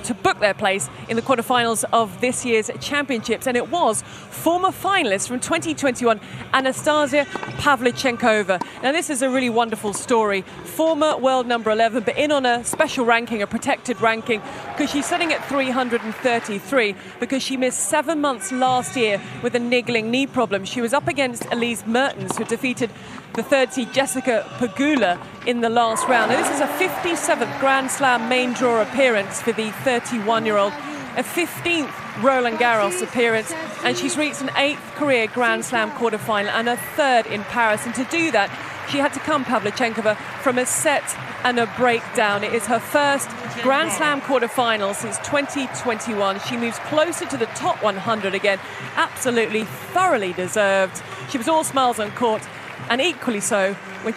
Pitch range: 220-275 Hz